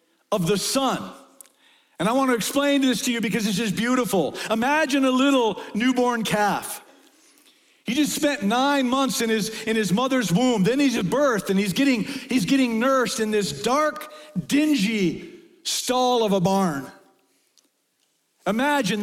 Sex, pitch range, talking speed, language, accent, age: male, 200-295 Hz, 160 wpm, English, American, 50-69